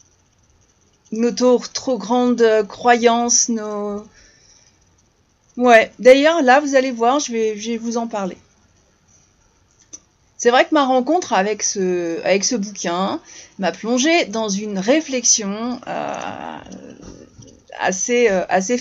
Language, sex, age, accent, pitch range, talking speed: French, female, 40-59, French, 185-245 Hz, 120 wpm